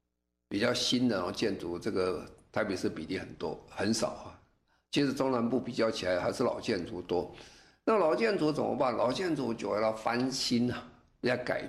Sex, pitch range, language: male, 100-125 Hz, Chinese